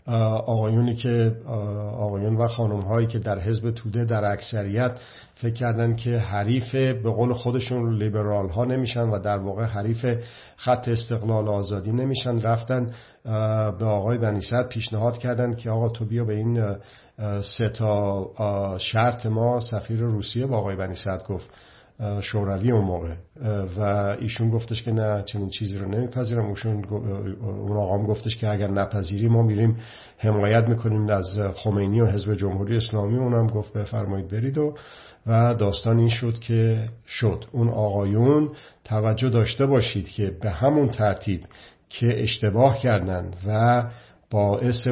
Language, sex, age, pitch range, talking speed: Persian, male, 50-69, 105-120 Hz, 140 wpm